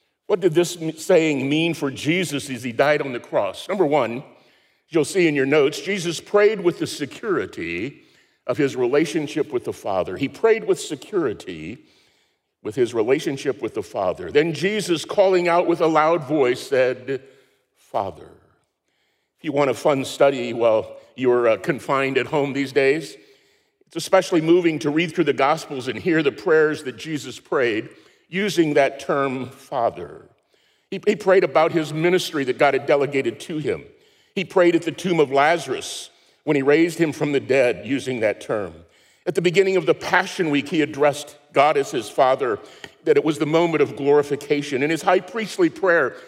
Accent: American